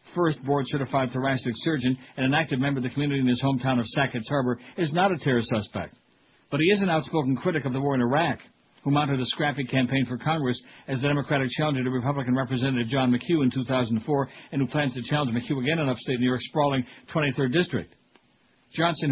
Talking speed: 205 wpm